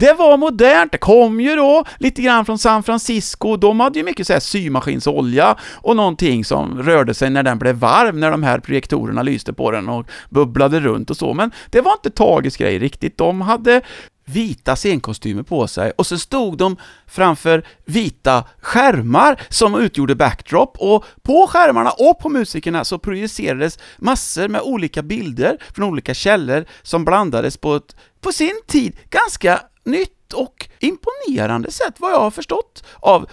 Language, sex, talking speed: English, male, 170 wpm